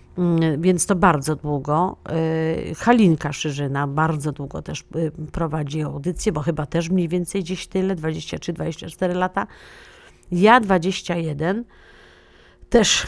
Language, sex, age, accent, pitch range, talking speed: Polish, female, 50-69, native, 160-195 Hz, 105 wpm